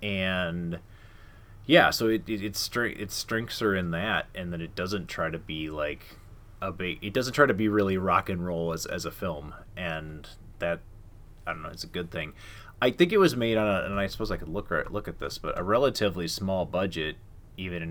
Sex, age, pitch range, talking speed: male, 30-49, 85-105 Hz, 230 wpm